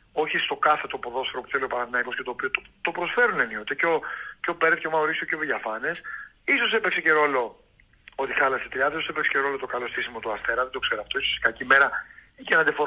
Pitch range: 145-200 Hz